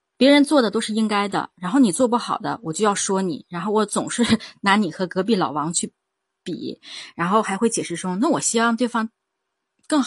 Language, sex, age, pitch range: Chinese, female, 20-39, 185-255 Hz